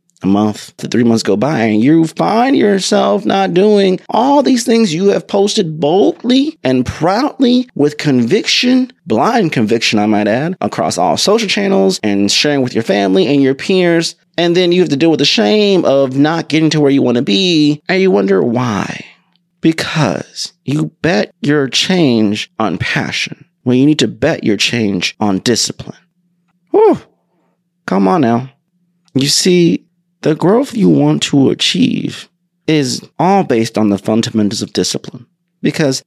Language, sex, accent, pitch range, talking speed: English, male, American, 125-190 Hz, 165 wpm